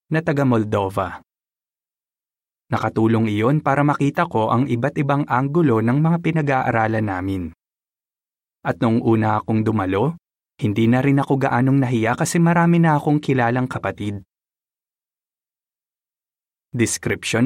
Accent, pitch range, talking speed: native, 105-140 Hz, 115 wpm